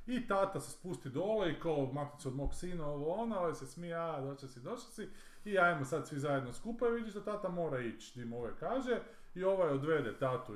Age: 30-49